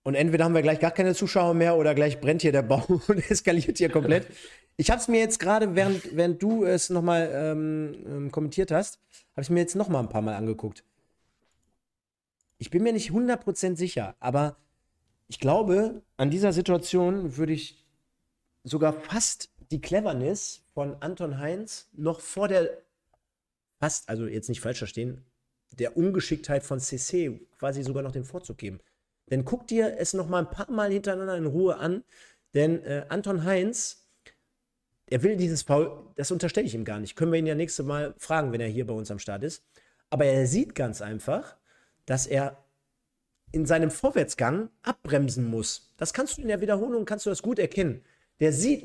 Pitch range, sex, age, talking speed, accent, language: 140-190 Hz, male, 40-59, 185 wpm, German, German